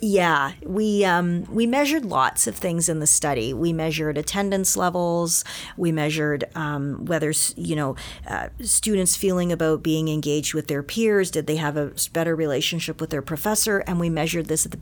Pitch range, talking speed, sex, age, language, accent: 155-190 Hz, 180 wpm, female, 40-59, English, American